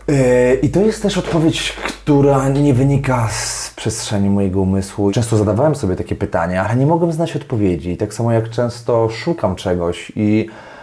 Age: 30-49